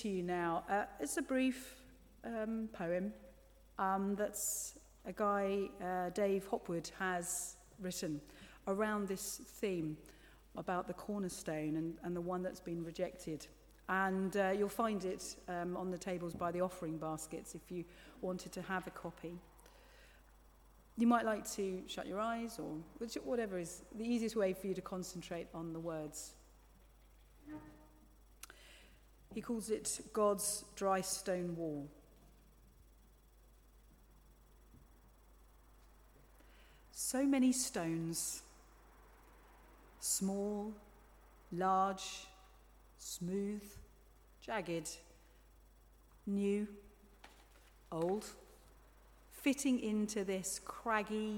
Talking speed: 105 wpm